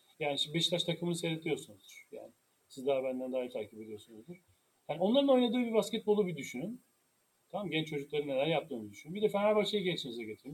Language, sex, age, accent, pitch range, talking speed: Turkish, male, 40-59, native, 160-225 Hz, 175 wpm